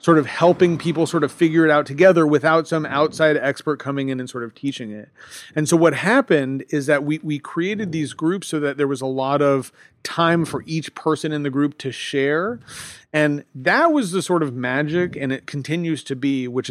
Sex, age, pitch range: male, 40-59, 135-165 Hz